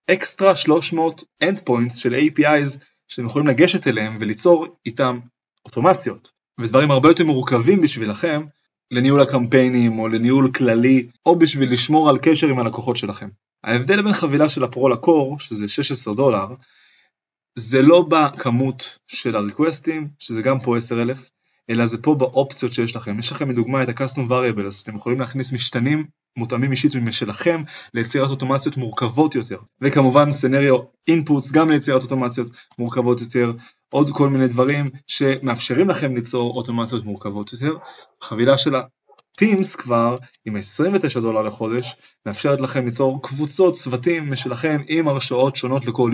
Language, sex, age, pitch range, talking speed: Hebrew, male, 20-39, 120-145 Hz, 140 wpm